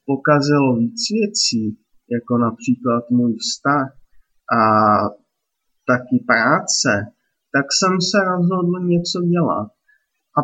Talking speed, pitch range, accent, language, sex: 100 wpm, 125-175 Hz, native, Czech, male